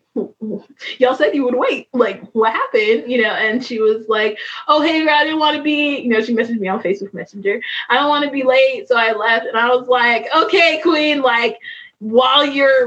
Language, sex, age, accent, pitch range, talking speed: English, female, 20-39, American, 215-300 Hz, 220 wpm